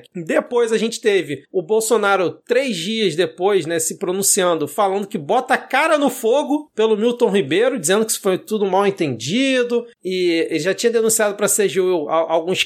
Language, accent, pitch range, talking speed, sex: Portuguese, Brazilian, 195-240 Hz, 175 wpm, male